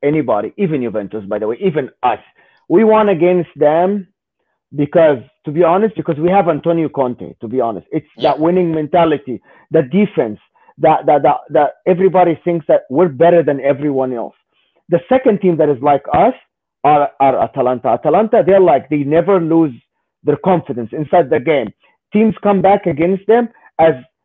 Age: 40-59